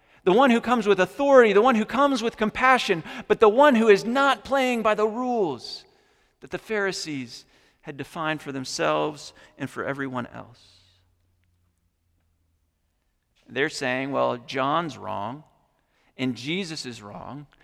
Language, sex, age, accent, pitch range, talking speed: English, male, 40-59, American, 110-155 Hz, 145 wpm